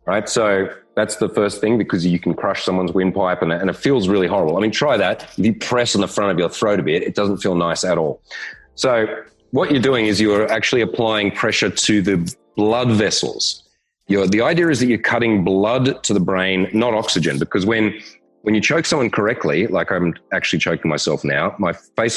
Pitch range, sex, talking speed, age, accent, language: 90-110 Hz, male, 215 wpm, 30-49, Australian, English